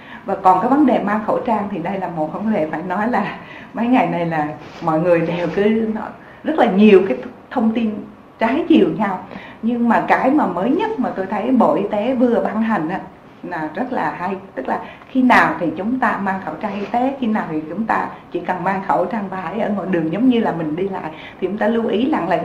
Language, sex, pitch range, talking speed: Vietnamese, female, 185-250 Hz, 250 wpm